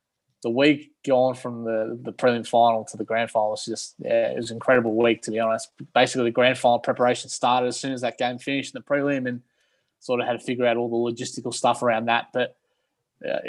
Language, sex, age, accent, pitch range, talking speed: English, male, 20-39, Australian, 120-135 Hz, 240 wpm